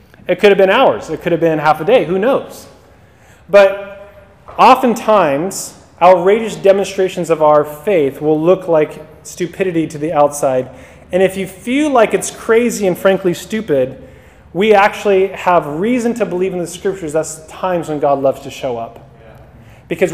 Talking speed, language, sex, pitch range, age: 165 wpm, English, male, 155-205 Hz, 30-49